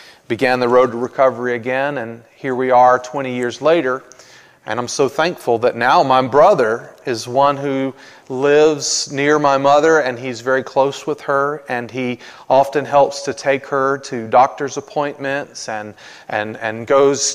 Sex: male